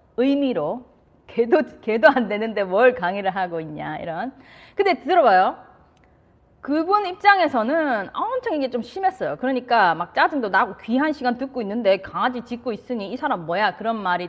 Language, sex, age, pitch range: Korean, female, 30-49, 190-290 Hz